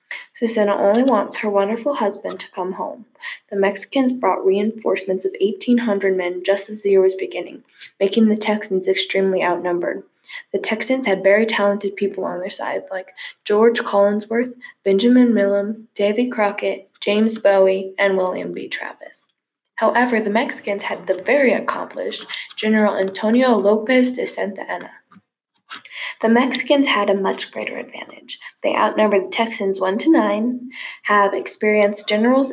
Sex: female